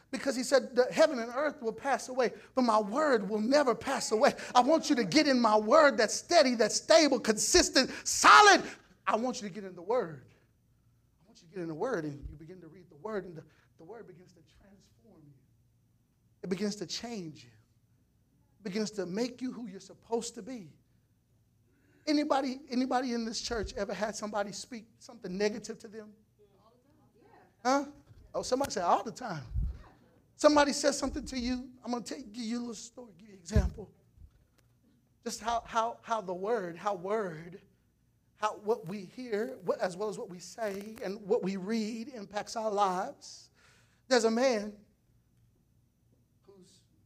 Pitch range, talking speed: 145-235 Hz, 185 wpm